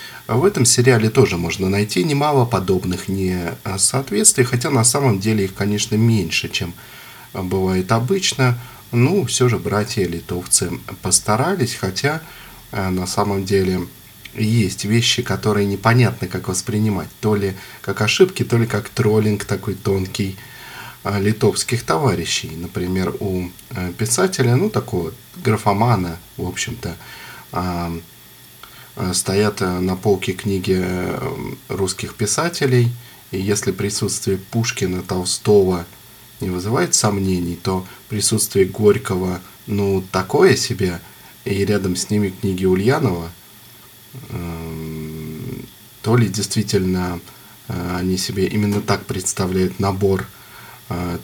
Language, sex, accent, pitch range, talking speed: Russian, male, native, 95-115 Hz, 110 wpm